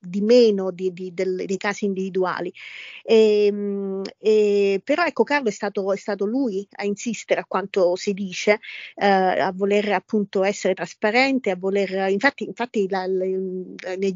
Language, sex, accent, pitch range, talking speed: Italian, female, native, 195-215 Hz, 145 wpm